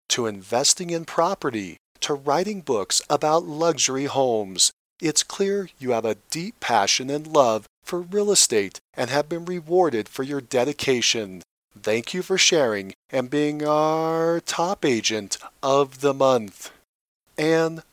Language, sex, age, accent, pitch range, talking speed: English, male, 40-59, American, 135-190 Hz, 140 wpm